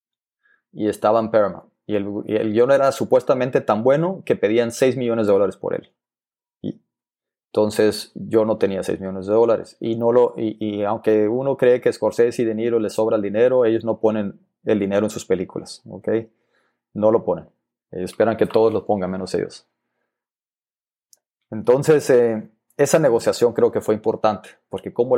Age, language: 30-49, Spanish